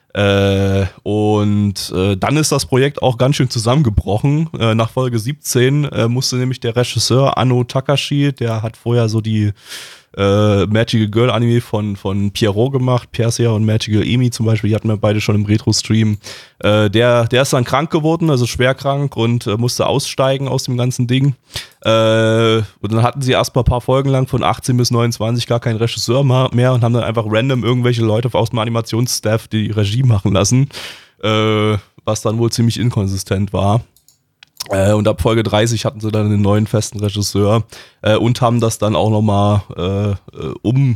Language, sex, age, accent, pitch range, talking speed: German, male, 20-39, German, 105-125 Hz, 185 wpm